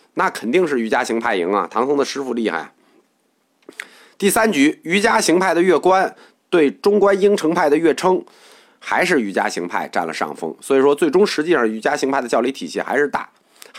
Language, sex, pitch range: Chinese, male, 120-205 Hz